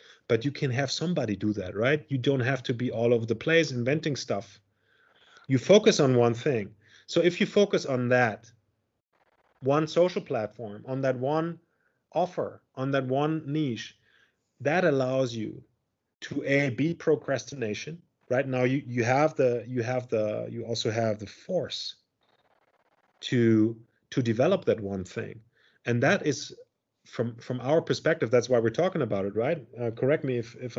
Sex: male